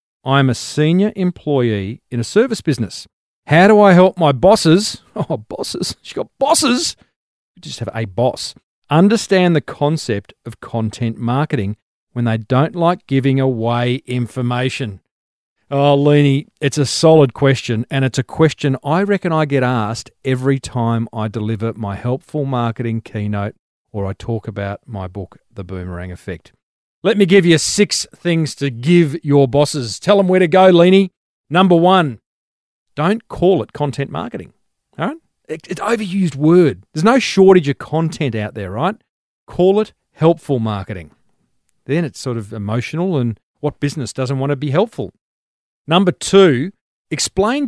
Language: English